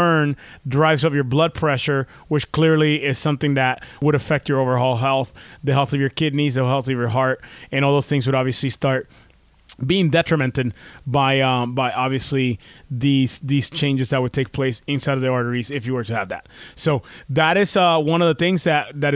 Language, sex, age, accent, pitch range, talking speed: English, male, 20-39, American, 130-150 Hz, 205 wpm